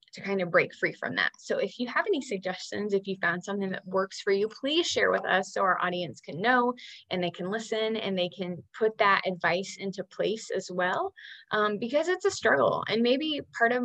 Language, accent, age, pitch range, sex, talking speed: English, American, 20-39, 185-220 Hz, female, 230 wpm